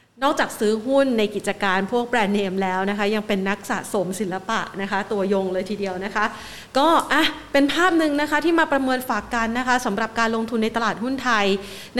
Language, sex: Thai, female